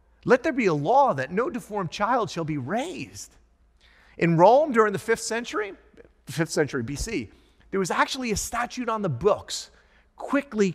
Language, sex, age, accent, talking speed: English, male, 30-49, American, 165 wpm